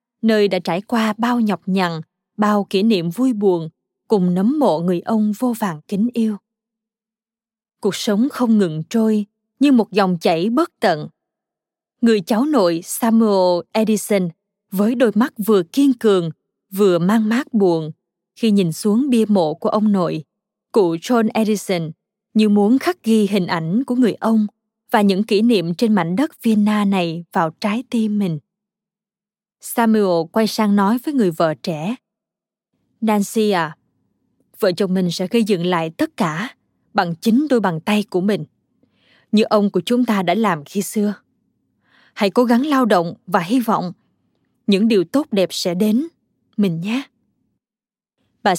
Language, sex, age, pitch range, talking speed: Vietnamese, female, 20-39, 185-230 Hz, 165 wpm